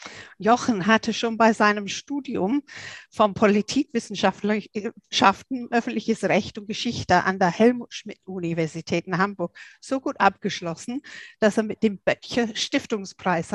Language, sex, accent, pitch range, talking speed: German, female, German, 195-245 Hz, 120 wpm